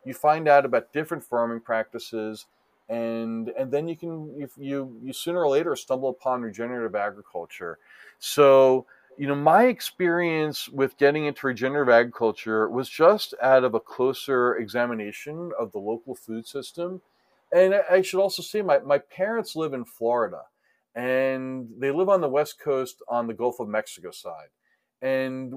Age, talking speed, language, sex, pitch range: 40-59, 160 wpm, English, male, 125-180 Hz